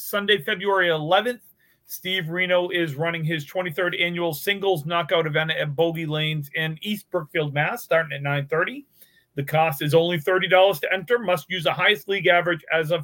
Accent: American